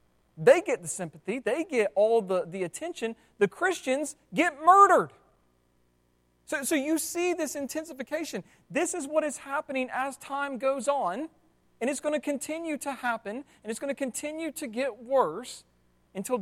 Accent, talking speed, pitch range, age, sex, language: American, 165 wpm, 165-270 Hz, 40-59, male, English